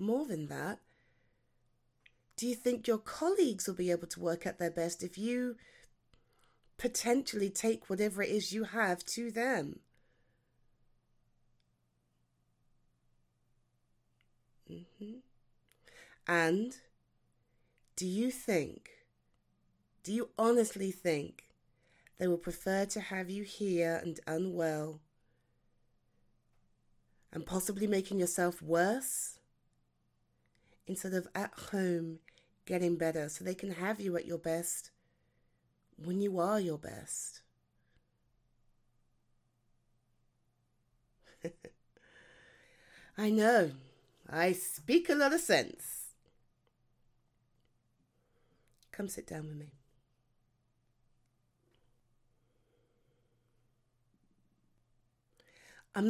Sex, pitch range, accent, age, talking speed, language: female, 120-205 Hz, British, 30-49, 90 wpm, English